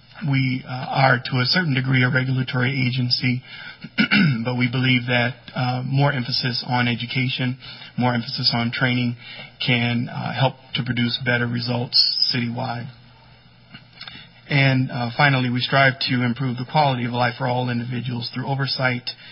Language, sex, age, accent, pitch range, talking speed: English, male, 40-59, American, 120-130 Hz, 145 wpm